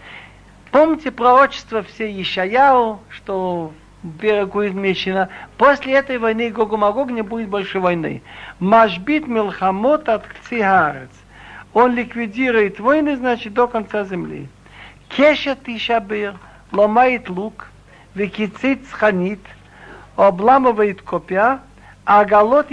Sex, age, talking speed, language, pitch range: male, 60-79, 90 wpm, Russian, 195-245 Hz